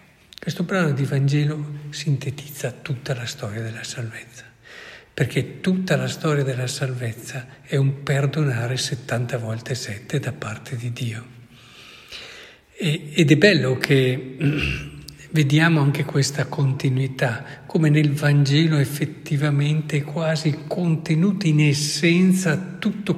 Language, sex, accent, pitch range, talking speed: Italian, male, native, 130-150 Hz, 115 wpm